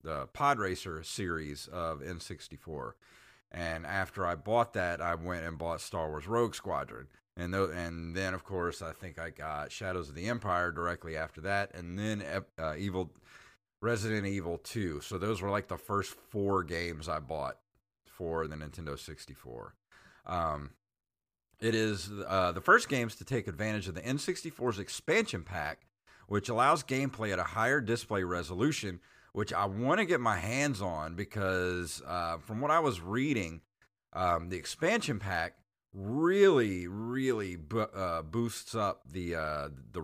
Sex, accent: male, American